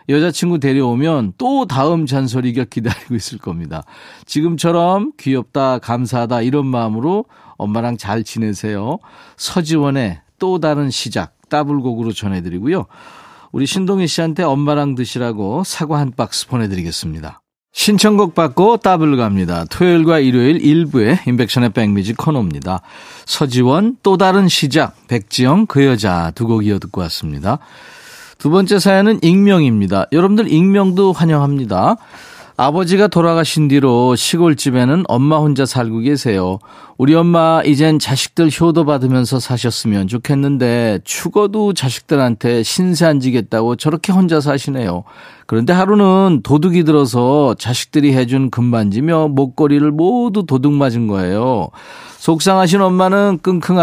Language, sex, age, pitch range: Korean, male, 40-59, 120-170 Hz